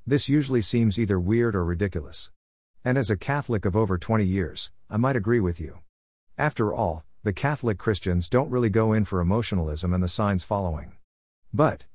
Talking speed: 180 wpm